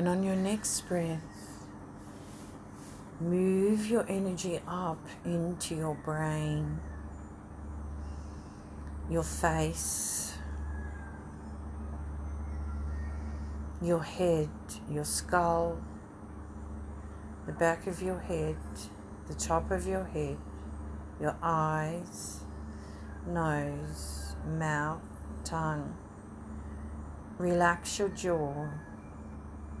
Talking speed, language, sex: 70 wpm, English, female